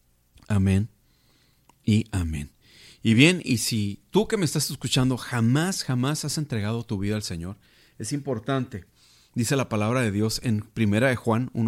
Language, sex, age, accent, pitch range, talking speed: Spanish, male, 40-59, Mexican, 115-150 Hz, 160 wpm